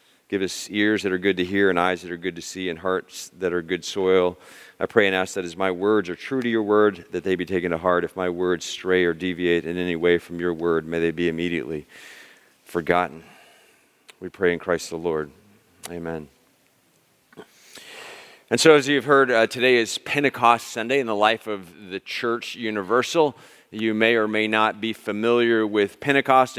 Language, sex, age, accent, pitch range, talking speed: English, male, 40-59, American, 100-130 Hz, 205 wpm